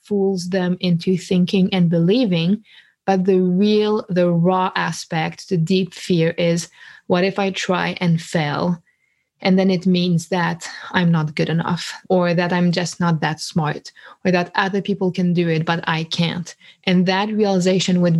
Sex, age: female, 20-39